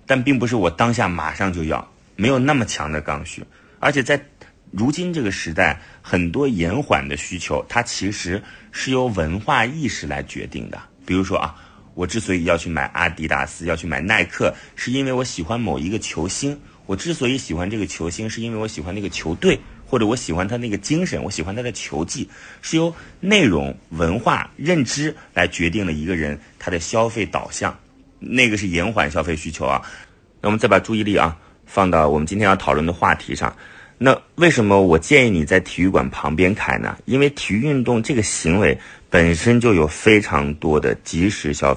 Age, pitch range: 30-49, 80-115 Hz